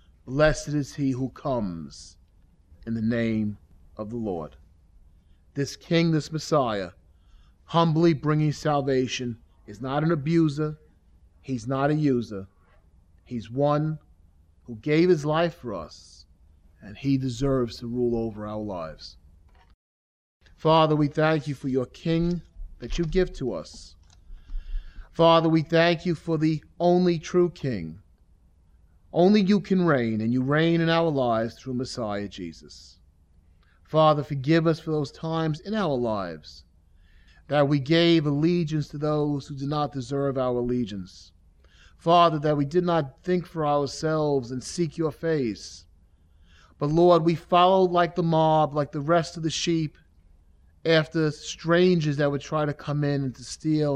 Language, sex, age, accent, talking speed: English, male, 30-49, American, 150 wpm